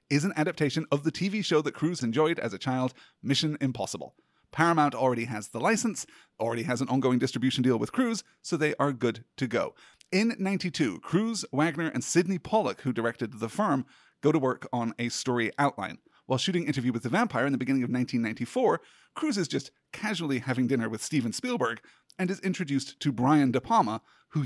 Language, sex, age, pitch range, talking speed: English, male, 30-49, 130-180 Hz, 195 wpm